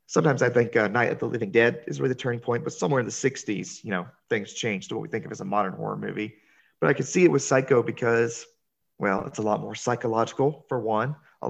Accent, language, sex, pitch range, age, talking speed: American, English, male, 115-145 Hz, 30-49, 260 wpm